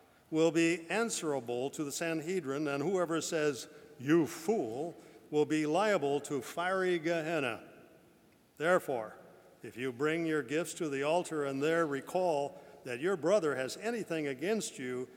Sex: male